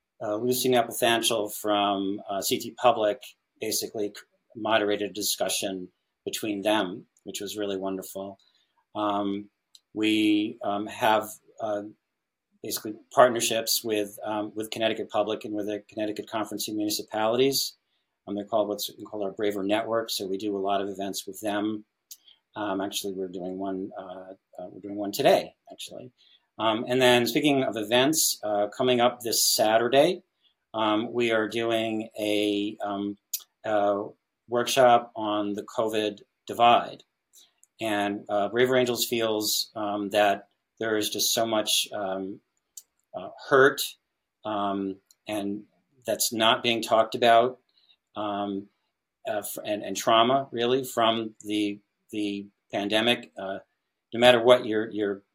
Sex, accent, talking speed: male, American, 140 wpm